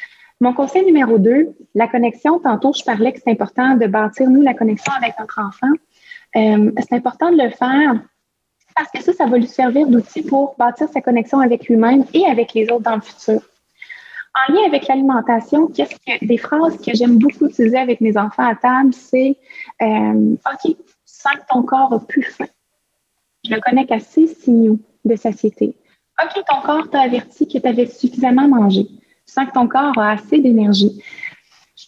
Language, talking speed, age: French, 195 wpm, 20-39